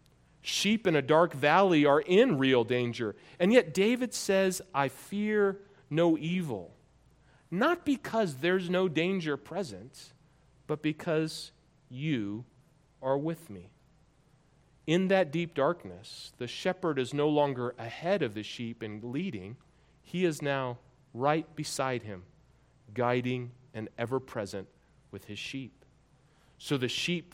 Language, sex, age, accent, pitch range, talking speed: English, male, 40-59, American, 125-160 Hz, 130 wpm